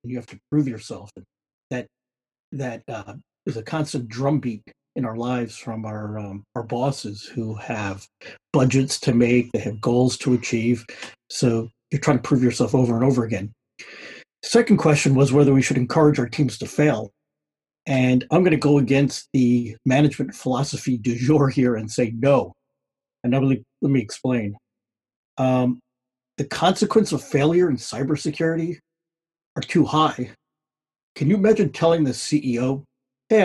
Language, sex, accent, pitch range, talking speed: English, male, American, 125-155 Hz, 160 wpm